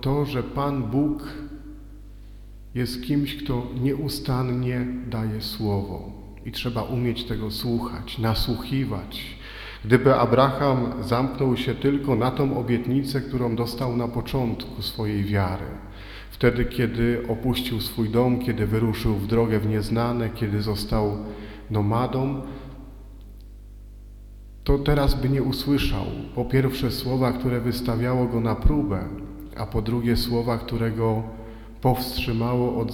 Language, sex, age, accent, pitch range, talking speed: Polish, male, 40-59, native, 110-130 Hz, 115 wpm